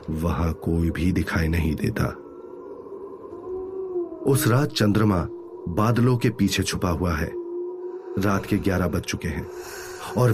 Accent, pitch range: native, 90-130 Hz